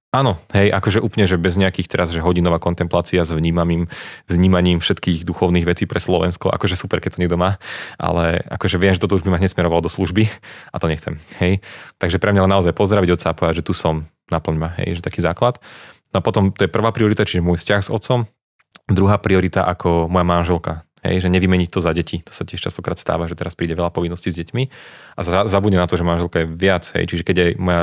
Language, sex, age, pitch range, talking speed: Slovak, male, 30-49, 85-100 Hz, 225 wpm